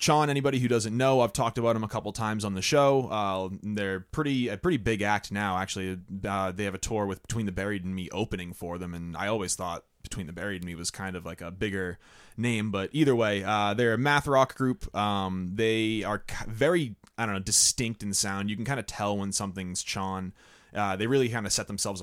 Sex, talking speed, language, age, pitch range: male, 240 wpm, English, 20-39, 95-120 Hz